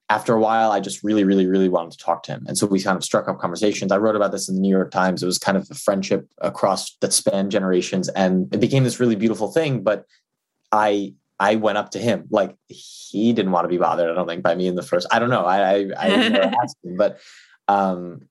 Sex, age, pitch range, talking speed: male, 20-39, 95-110 Hz, 260 wpm